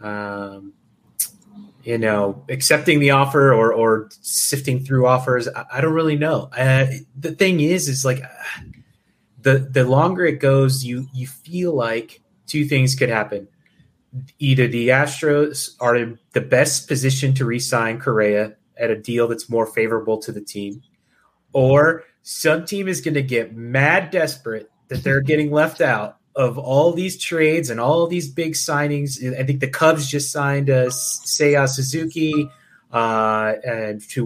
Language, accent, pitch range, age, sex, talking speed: English, American, 120-145 Hz, 30-49, male, 160 wpm